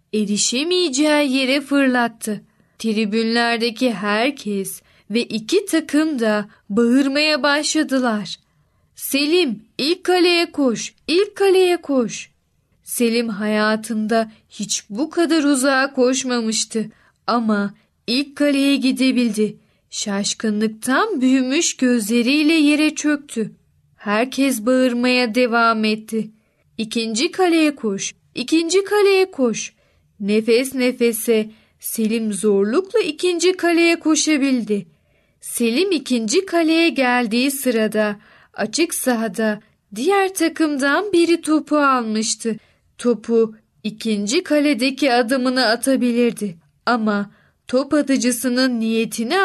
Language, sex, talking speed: Turkish, female, 85 wpm